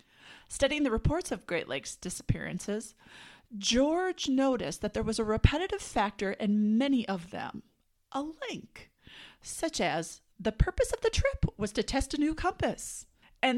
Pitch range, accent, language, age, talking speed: 205-275 Hz, American, English, 40-59, 155 wpm